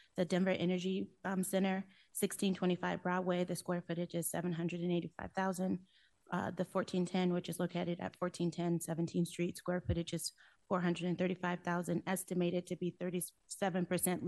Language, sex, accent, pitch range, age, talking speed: English, female, American, 175-190 Hz, 30-49, 120 wpm